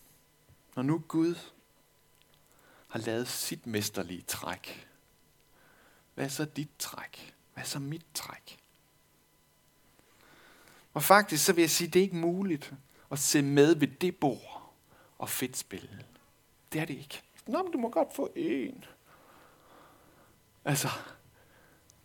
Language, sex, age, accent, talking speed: Danish, male, 60-79, native, 135 wpm